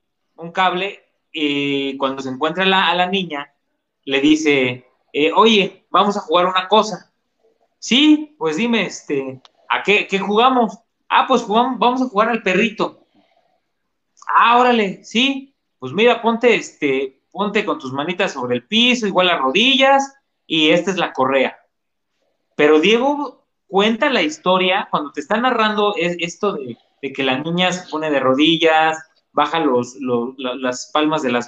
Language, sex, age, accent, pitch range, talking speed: Spanish, male, 30-49, Mexican, 140-205 Hz, 160 wpm